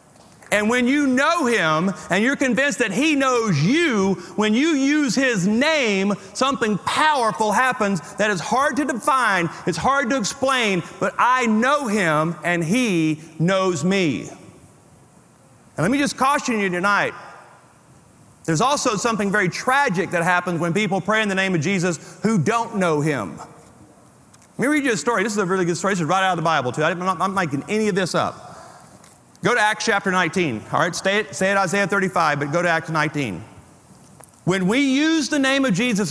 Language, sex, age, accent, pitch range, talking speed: English, male, 40-59, American, 175-235 Hz, 190 wpm